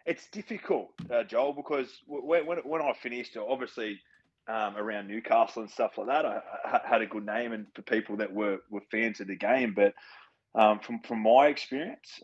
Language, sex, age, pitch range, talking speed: English, male, 20-39, 100-110 Hz, 190 wpm